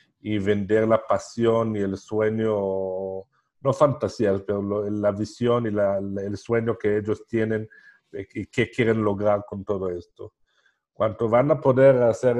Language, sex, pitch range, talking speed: Spanish, male, 100-120 Hz, 165 wpm